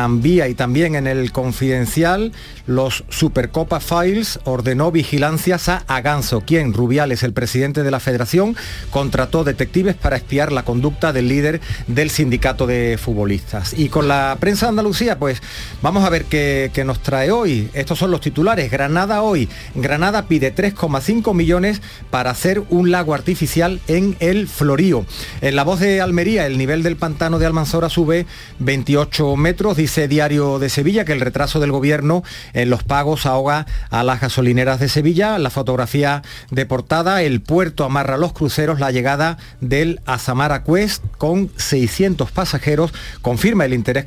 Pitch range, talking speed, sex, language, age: 130-170 Hz, 160 wpm, male, Spanish, 40-59